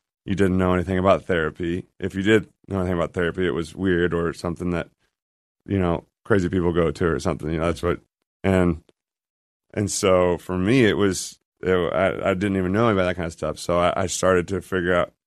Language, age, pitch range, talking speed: English, 30-49, 85-95 Hz, 220 wpm